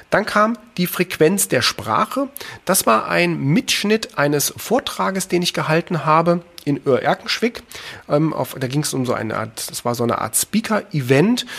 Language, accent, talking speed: German, German, 165 wpm